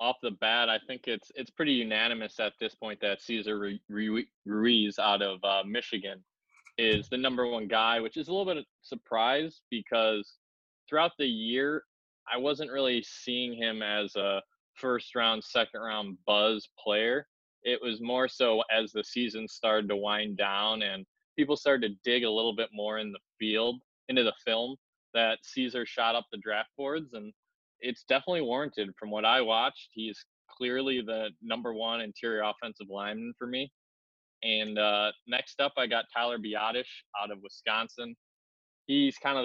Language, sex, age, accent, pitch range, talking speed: English, male, 20-39, American, 105-125 Hz, 170 wpm